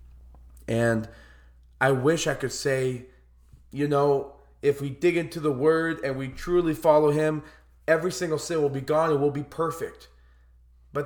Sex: male